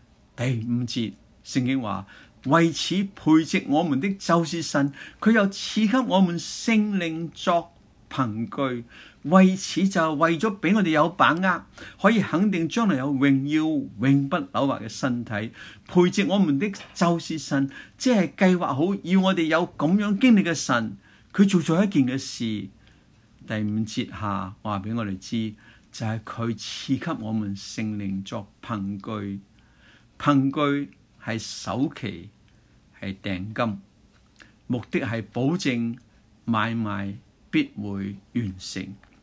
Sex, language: male, Chinese